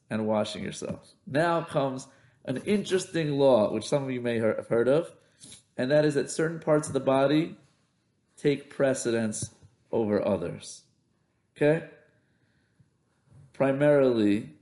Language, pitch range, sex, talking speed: English, 130-155 Hz, male, 125 wpm